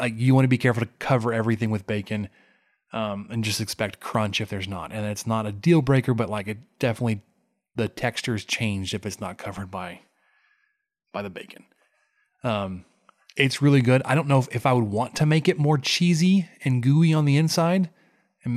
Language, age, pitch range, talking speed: English, 20-39, 110-130 Hz, 205 wpm